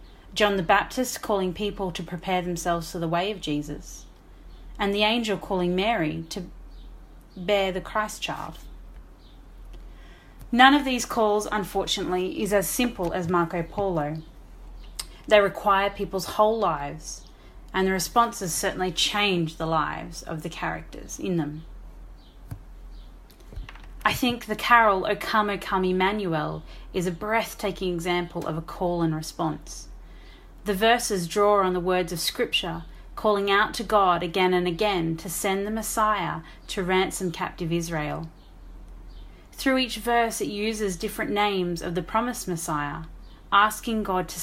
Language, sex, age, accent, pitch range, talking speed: English, female, 30-49, Australian, 165-205 Hz, 145 wpm